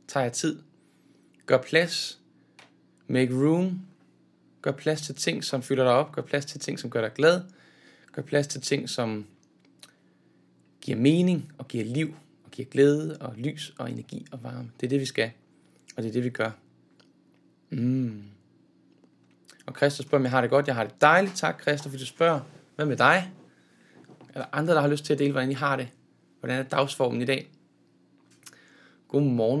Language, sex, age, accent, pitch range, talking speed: Danish, male, 20-39, native, 130-160 Hz, 185 wpm